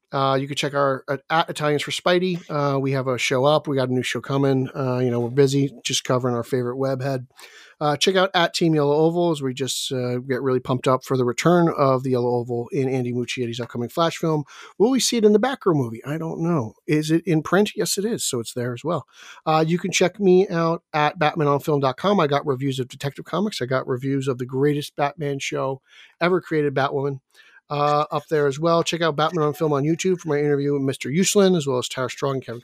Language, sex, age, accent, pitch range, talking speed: English, male, 40-59, American, 135-180 Hz, 245 wpm